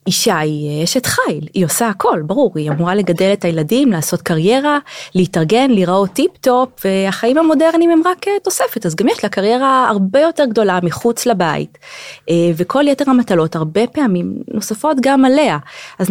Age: 20-39